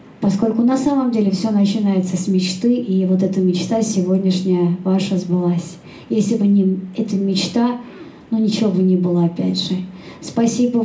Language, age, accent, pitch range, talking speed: Russian, 20-39, native, 185-230 Hz, 155 wpm